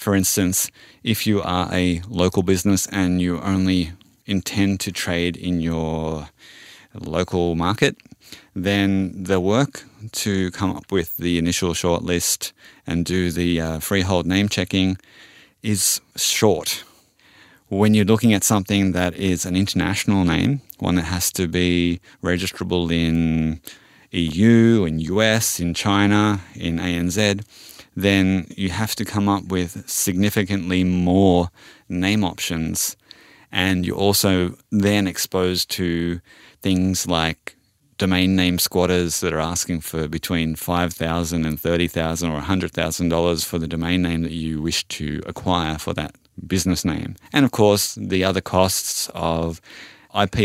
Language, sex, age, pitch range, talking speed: English, male, 30-49, 85-100 Hz, 135 wpm